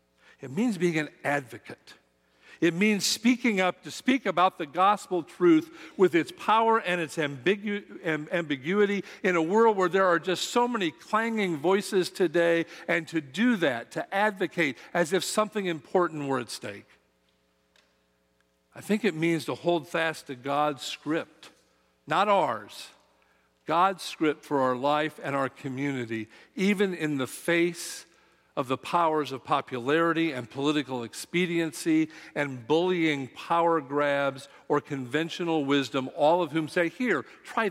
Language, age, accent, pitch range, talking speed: English, 50-69, American, 135-185 Hz, 150 wpm